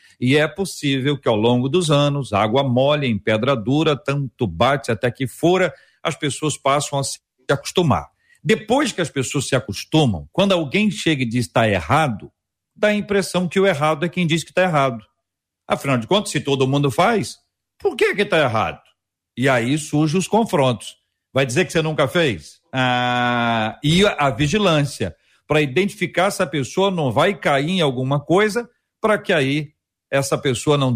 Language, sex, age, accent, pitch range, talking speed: Portuguese, male, 50-69, Brazilian, 125-180 Hz, 180 wpm